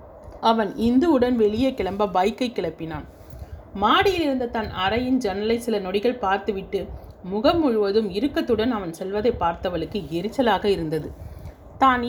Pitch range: 185-240 Hz